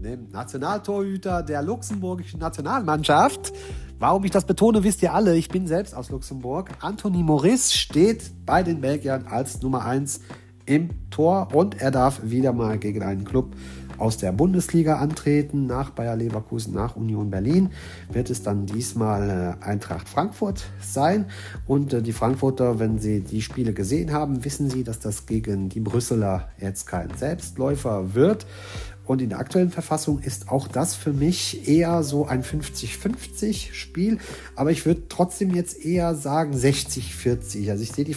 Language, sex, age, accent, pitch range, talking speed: German, male, 40-59, German, 105-155 Hz, 155 wpm